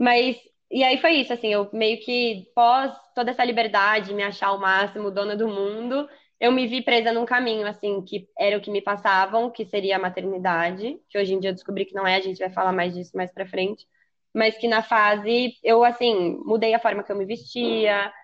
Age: 10-29